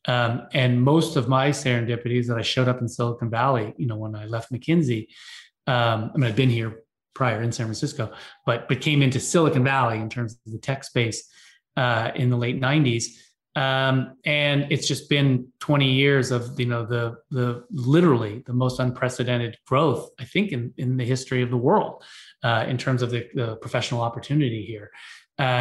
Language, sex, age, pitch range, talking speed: English, male, 30-49, 120-140 Hz, 190 wpm